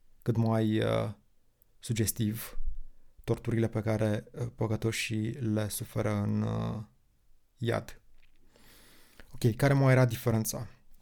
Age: 20-39